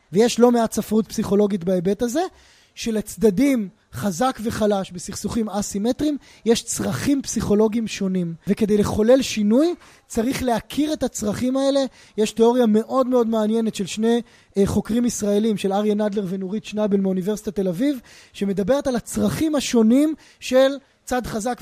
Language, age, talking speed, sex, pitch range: Hebrew, 20-39, 135 wpm, male, 215-275 Hz